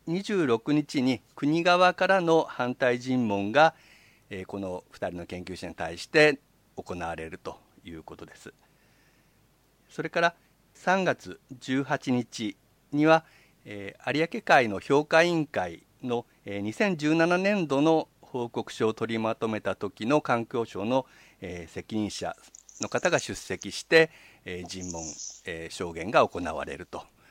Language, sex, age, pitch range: Japanese, male, 50-69, 100-155 Hz